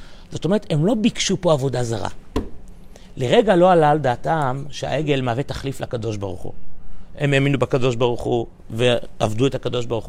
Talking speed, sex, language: 165 wpm, male, Hebrew